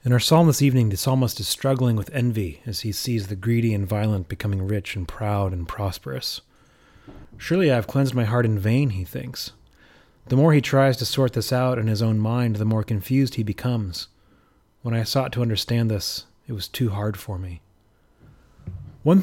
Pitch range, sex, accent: 110-130 Hz, male, American